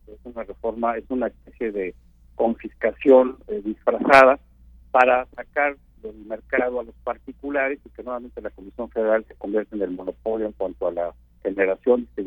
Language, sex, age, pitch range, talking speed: Spanish, male, 50-69, 105-135 Hz, 160 wpm